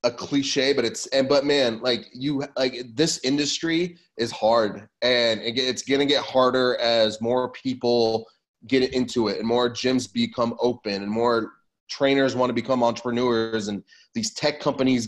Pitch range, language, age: 120-140 Hz, English, 20-39